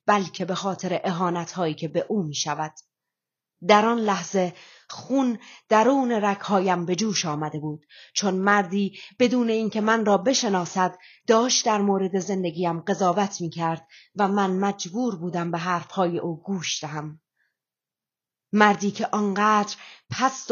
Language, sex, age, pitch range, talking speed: Persian, female, 30-49, 165-215 Hz, 130 wpm